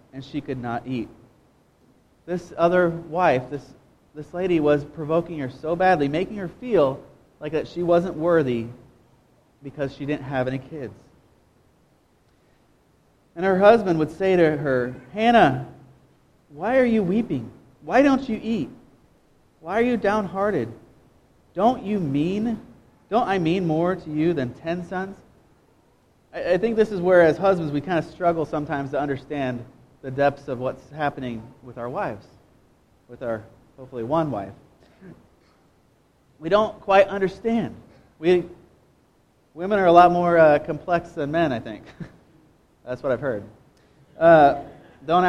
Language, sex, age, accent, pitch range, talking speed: English, male, 30-49, American, 135-190 Hz, 150 wpm